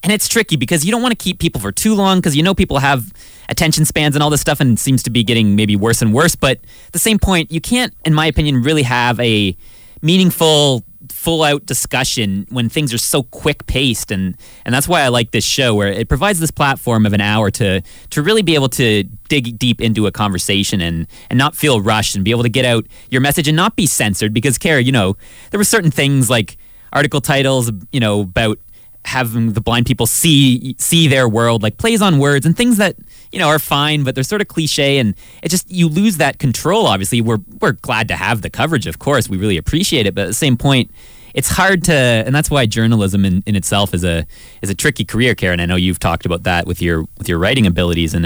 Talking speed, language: 240 wpm, English